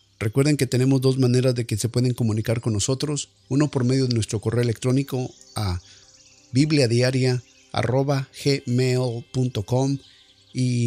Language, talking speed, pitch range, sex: Spanish, 125 wpm, 110-130 Hz, male